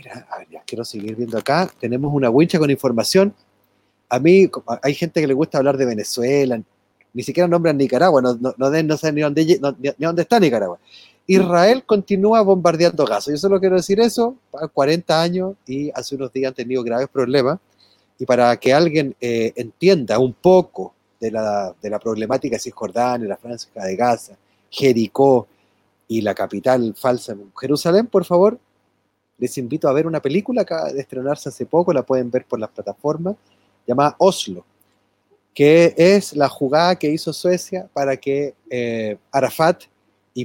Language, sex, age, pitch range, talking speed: Spanish, male, 30-49, 115-165 Hz, 170 wpm